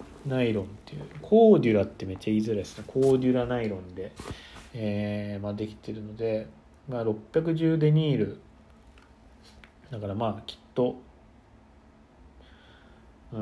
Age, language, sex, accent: 40-59, Japanese, male, native